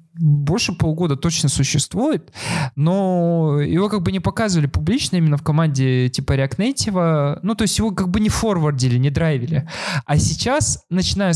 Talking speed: 160 wpm